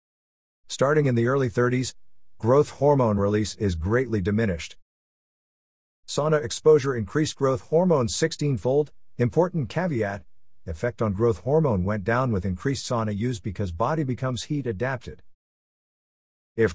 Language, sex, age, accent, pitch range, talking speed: English, male, 50-69, American, 100-125 Hz, 125 wpm